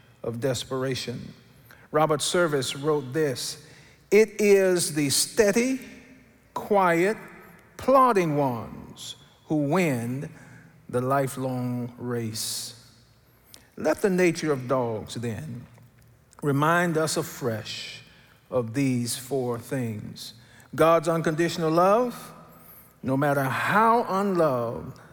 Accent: American